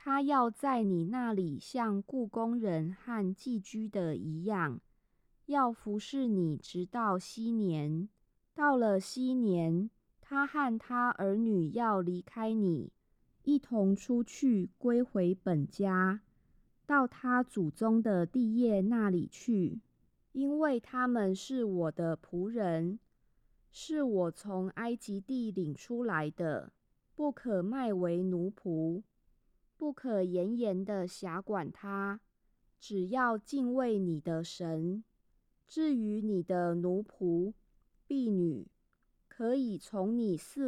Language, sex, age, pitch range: Chinese, female, 20-39, 180-240 Hz